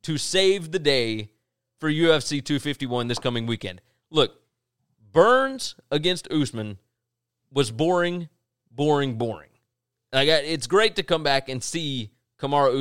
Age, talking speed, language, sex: 30-49, 135 wpm, English, male